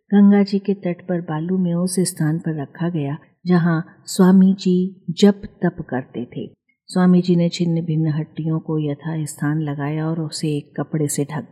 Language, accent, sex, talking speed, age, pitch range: Hindi, native, female, 180 wpm, 50-69, 155-190 Hz